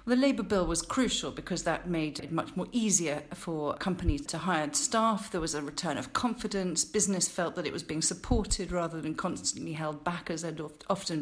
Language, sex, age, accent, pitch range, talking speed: English, female, 40-59, British, 165-210 Hz, 205 wpm